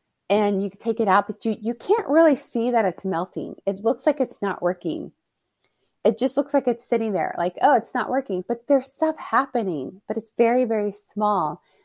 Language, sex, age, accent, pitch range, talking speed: English, female, 30-49, American, 195-265 Hz, 215 wpm